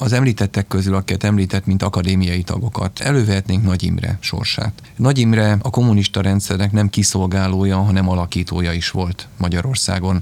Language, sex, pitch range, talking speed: Hungarian, male, 95-105 Hz, 130 wpm